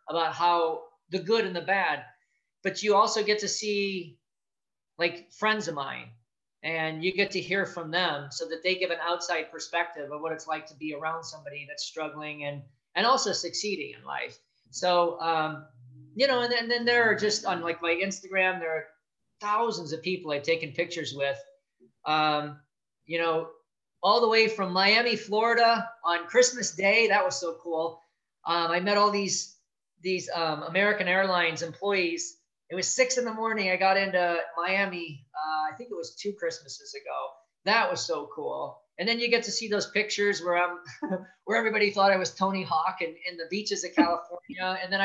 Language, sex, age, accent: English, male, 40-59, American